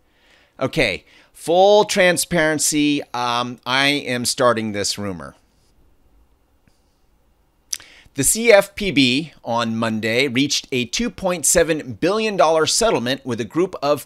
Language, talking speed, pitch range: English, 95 wpm, 125-165 Hz